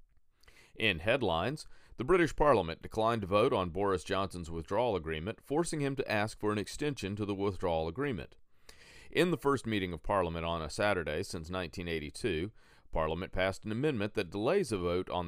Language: English